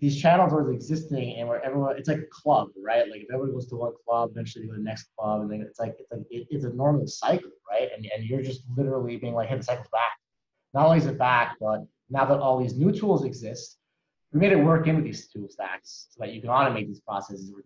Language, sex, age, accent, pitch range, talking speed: English, male, 30-49, American, 110-140 Hz, 275 wpm